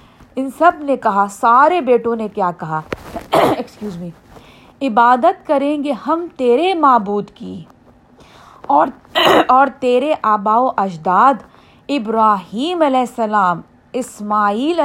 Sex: female